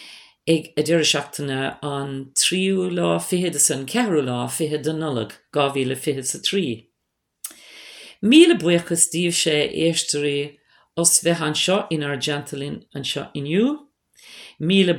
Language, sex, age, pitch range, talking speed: English, female, 50-69, 150-190 Hz, 100 wpm